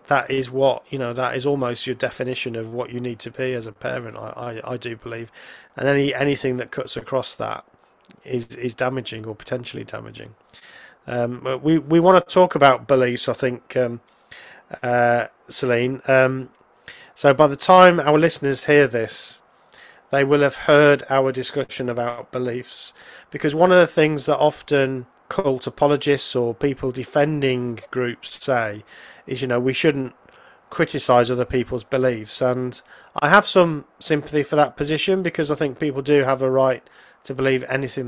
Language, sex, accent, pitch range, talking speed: English, male, British, 125-145 Hz, 175 wpm